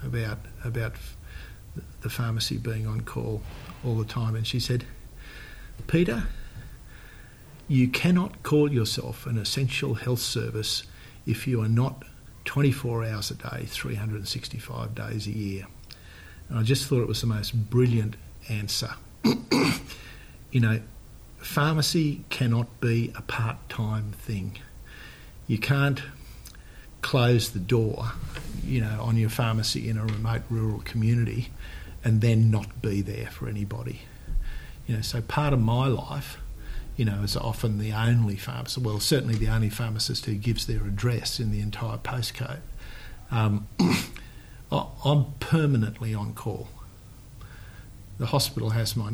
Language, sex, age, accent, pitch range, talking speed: English, male, 50-69, Australian, 110-125 Hz, 135 wpm